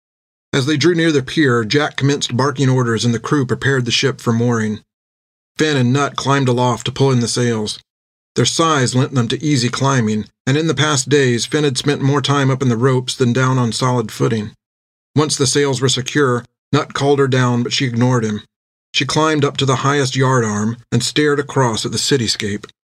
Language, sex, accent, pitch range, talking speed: English, male, American, 115-140 Hz, 210 wpm